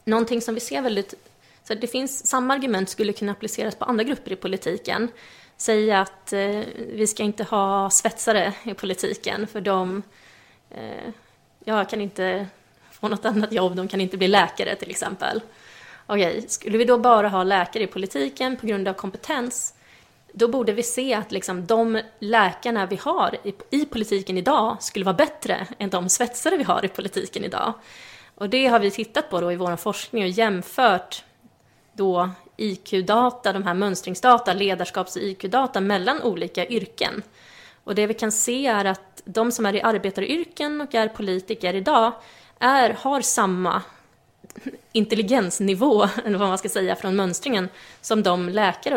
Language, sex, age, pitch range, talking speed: English, female, 20-39, 195-235 Hz, 170 wpm